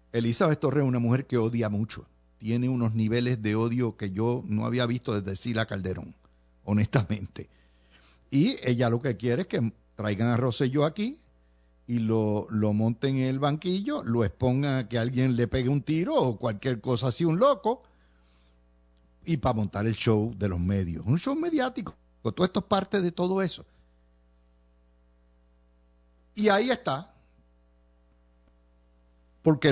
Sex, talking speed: male, 155 wpm